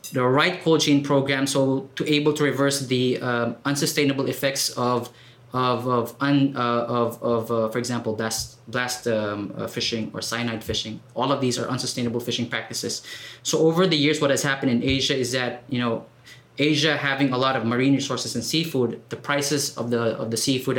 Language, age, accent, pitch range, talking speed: English, 20-39, Filipino, 120-145 Hz, 195 wpm